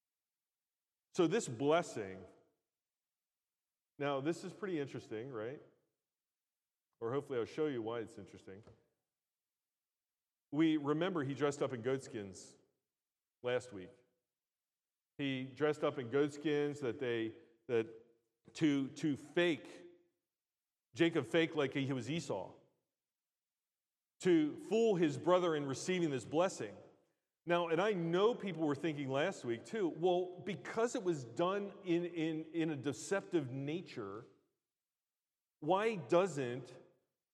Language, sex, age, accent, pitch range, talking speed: English, male, 40-59, American, 140-185 Hz, 115 wpm